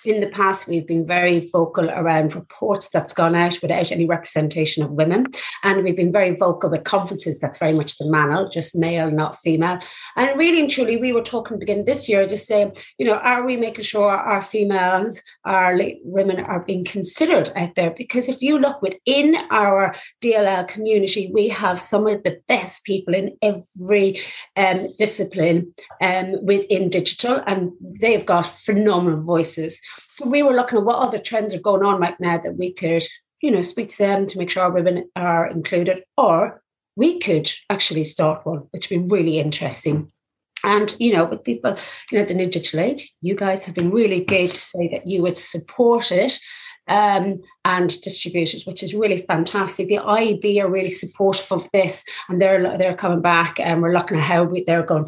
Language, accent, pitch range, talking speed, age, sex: English, British, 170-205 Hz, 195 wpm, 30-49, female